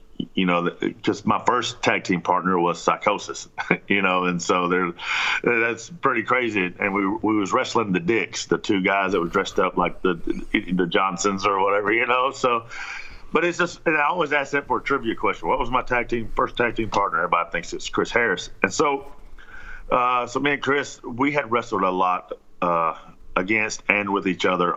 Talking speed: 205 wpm